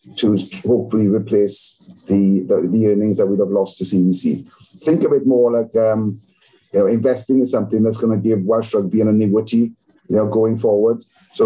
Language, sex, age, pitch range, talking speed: English, male, 50-69, 105-120 Hz, 195 wpm